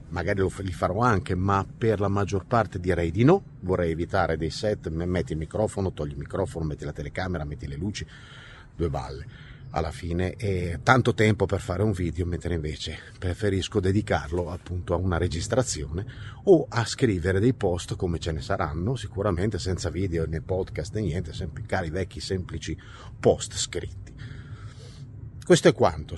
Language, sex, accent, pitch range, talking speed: Italian, male, native, 90-120 Hz, 165 wpm